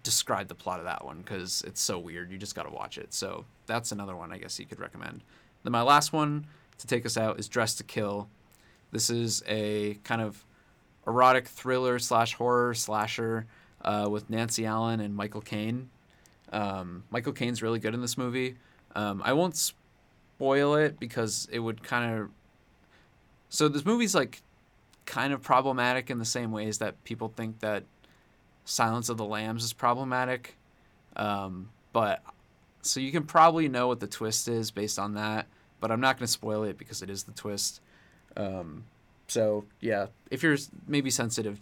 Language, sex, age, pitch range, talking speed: English, male, 20-39, 100-120 Hz, 180 wpm